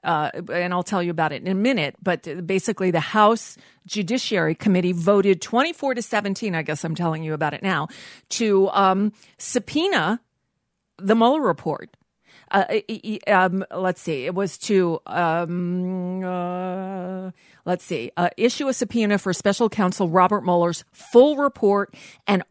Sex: female